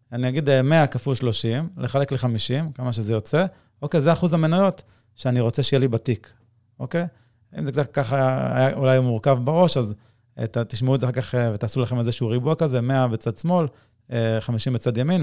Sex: male